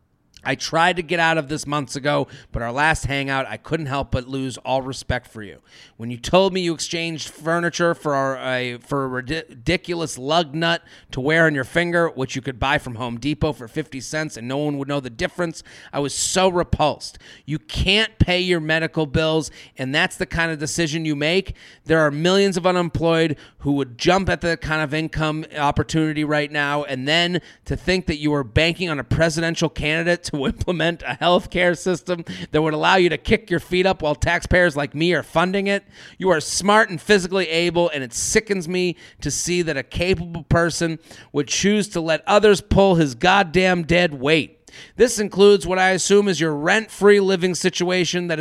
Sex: male